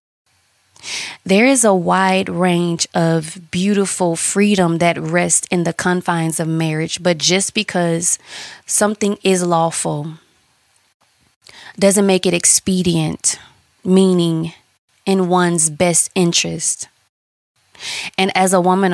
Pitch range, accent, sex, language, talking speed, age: 165-190 Hz, American, female, English, 110 wpm, 20-39